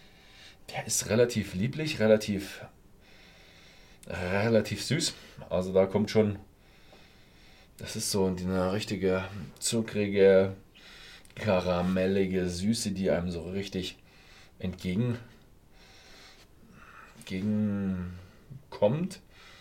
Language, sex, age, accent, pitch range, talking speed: German, male, 40-59, German, 95-110 Hz, 75 wpm